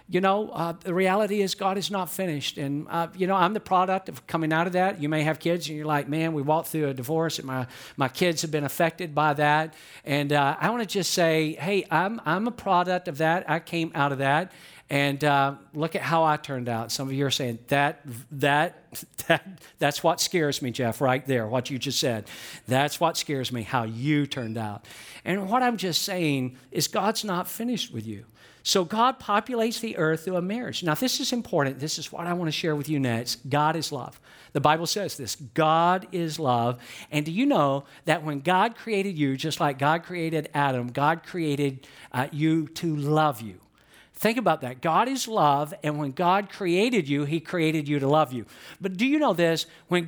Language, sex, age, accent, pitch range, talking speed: English, male, 50-69, American, 140-180 Hz, 220 wpm